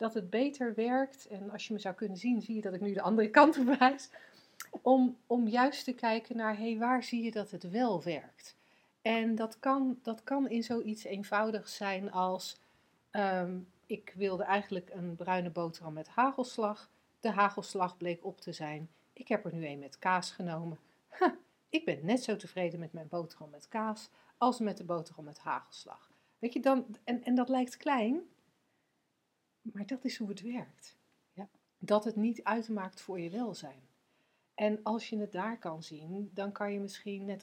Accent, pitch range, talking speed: Dutch, 180-230 Hz, 190 wpm